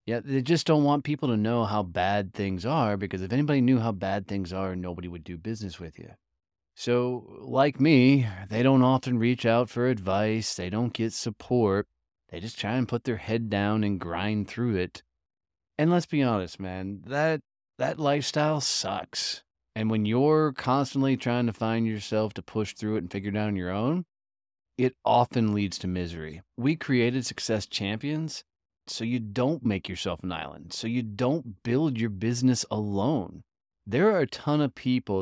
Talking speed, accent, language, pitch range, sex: 185 wpm, American, English, 100-135 Hz, male